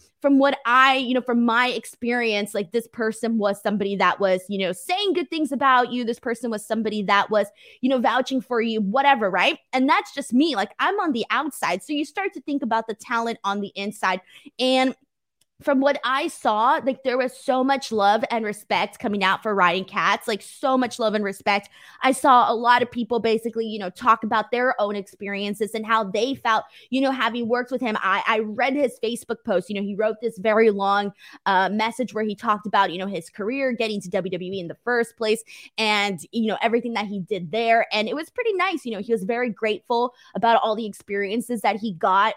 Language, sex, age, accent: English, female, 20-39, American